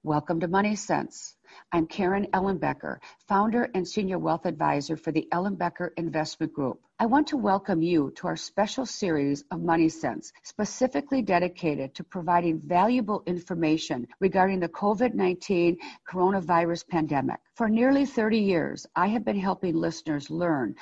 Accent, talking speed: American, 145 wpm